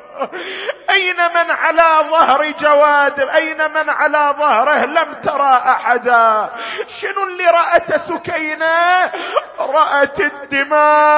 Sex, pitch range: male, 300-340 Hz